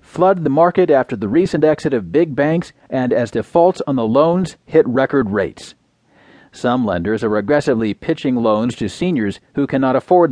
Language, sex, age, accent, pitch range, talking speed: English, male, 40-59, American, 120-165 Hz, 175 wpm